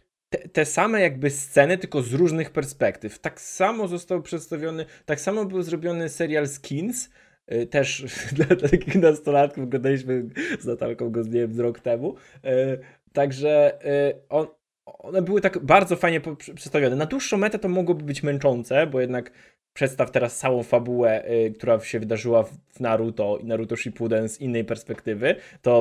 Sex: male